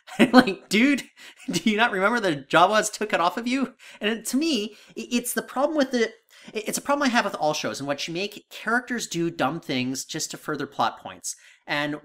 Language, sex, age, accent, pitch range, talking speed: English, male, 30-49, American, 150-245 Hz, 210 wpm